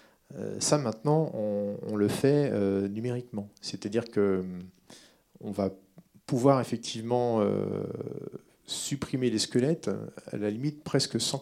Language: French